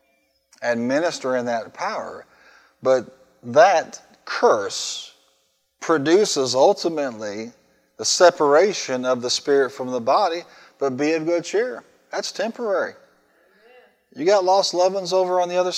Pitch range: 120-170 Hz